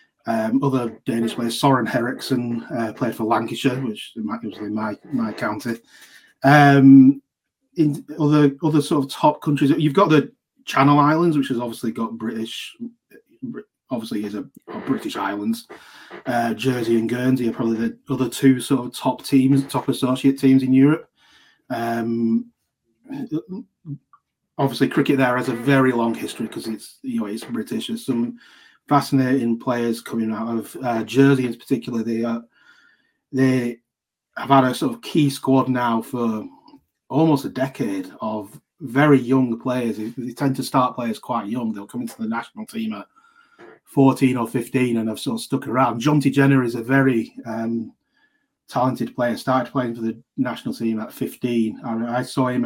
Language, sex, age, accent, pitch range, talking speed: English, male, 30-49, British, 115-140 Hz, 165 wpm